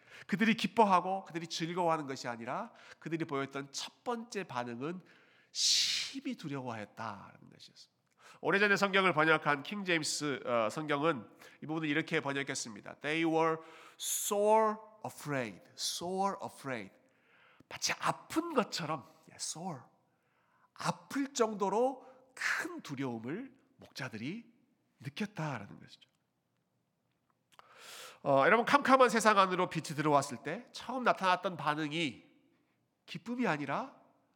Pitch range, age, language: 140-200 Hz, 40-59, Korean